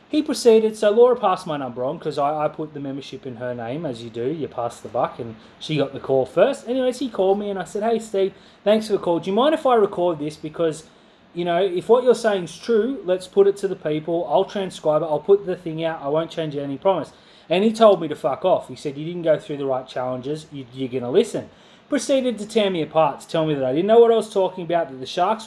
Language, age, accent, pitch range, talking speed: English, 30-49, Australian, 150-215 Hz, 280 wpm